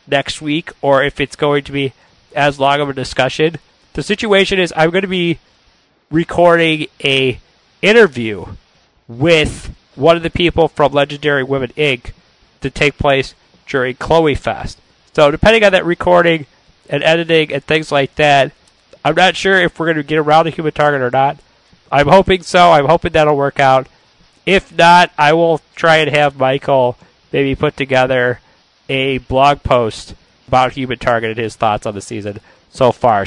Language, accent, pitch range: English, American, 130-160 Hz